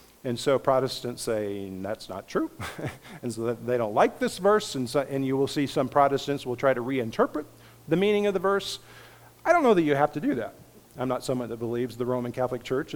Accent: American